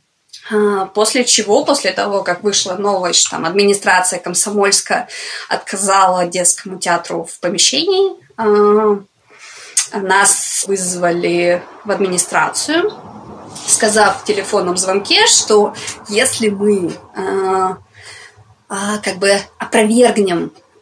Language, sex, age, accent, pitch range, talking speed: Russian, female, 20-39, native, 180-210 Hz, 80 wpm